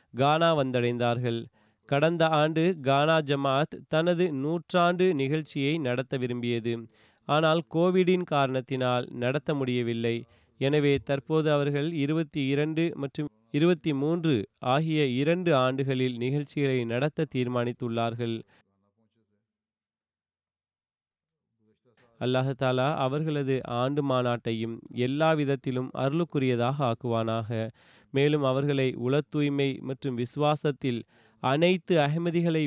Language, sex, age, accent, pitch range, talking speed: Tamil, male, 30-49, native, 120-150 Hz, 80 wpm